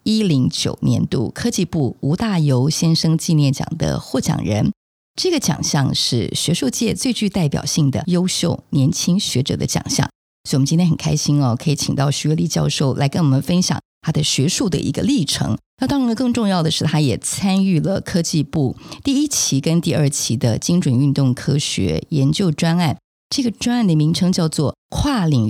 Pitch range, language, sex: 140-180 Hz, Chinese, female